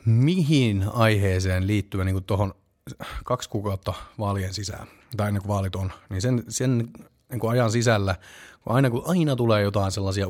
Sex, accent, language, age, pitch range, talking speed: male, native, Finnish, 30-49, 95-125 Hz, 165 wpm